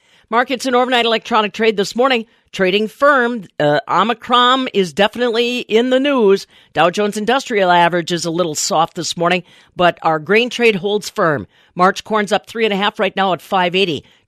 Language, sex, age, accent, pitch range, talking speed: English, female, 50-69, American, 170-225 Hz, 170 wpm